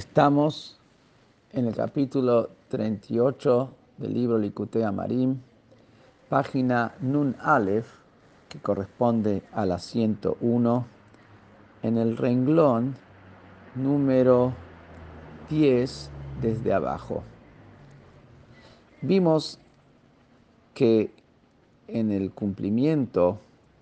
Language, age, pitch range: Spanish, 50-69, 105-130 Hz